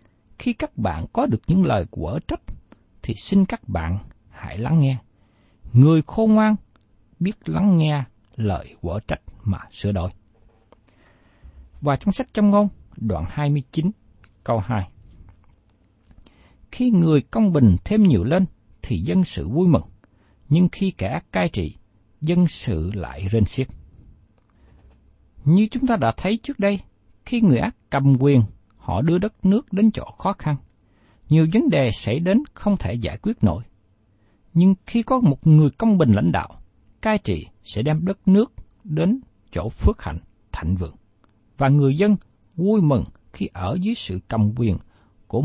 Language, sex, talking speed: Vietnamese, male, 160 wpm